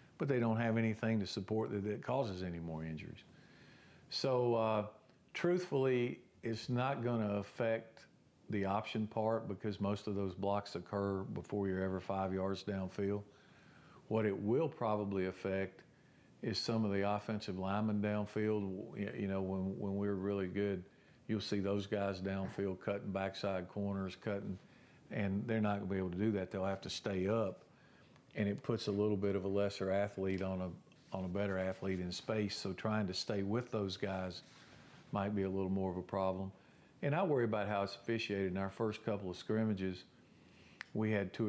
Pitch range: 95-110 Hz